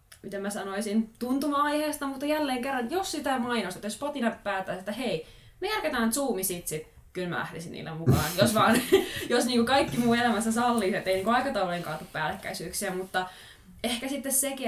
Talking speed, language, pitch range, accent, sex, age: 160 wpm, Finnish, 185-240 Hz, native, female, 20-39